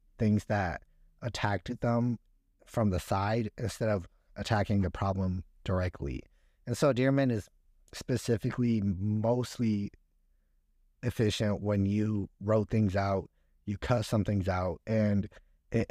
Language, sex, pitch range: English, male, 90-115 Hz